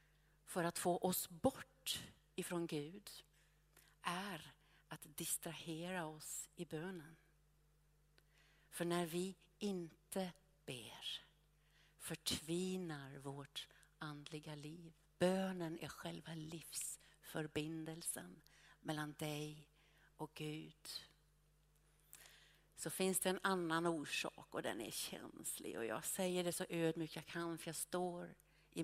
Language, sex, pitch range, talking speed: Swedish, female, 155-200 Hz, 110 wpm